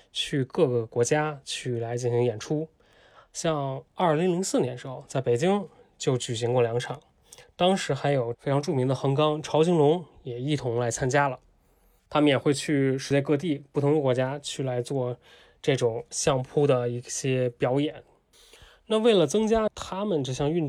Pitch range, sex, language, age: 125-155 Hz, male, Chinese, 20-39